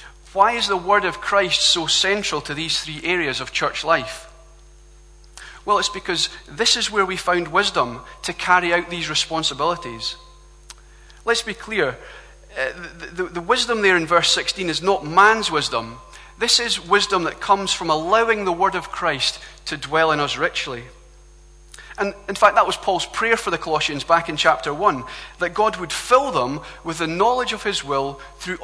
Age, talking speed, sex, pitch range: 30-49, 175 wpm, male, 150-195 Hz